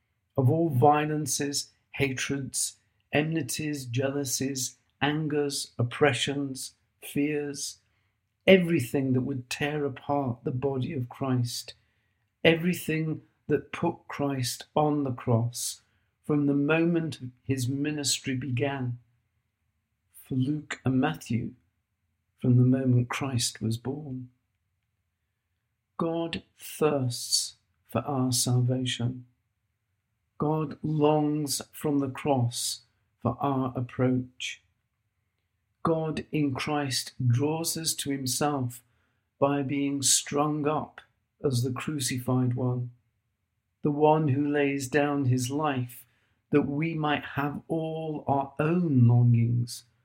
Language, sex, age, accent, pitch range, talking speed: English, male, 50-69, British, 115-145 Hz, 100 wpm